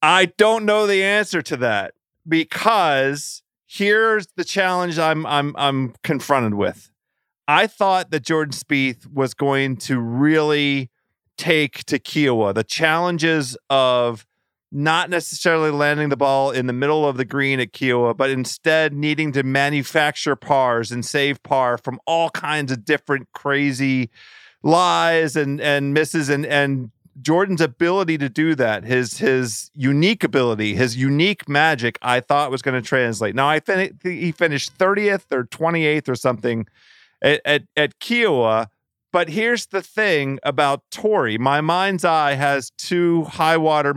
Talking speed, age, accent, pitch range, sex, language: 150 wpm, 40-59, American, 135-170 Hz, male, English